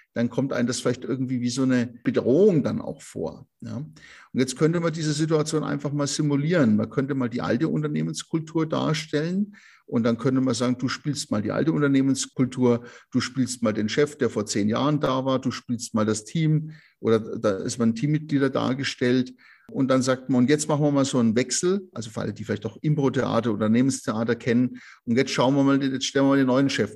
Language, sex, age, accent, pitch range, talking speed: German, male, 50-69, German, 120-150 Hz, 215 wpm